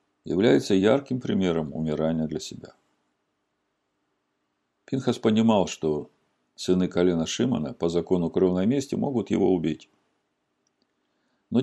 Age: 50-69